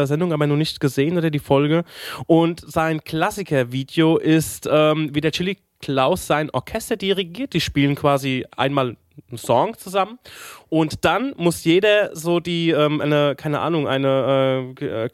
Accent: German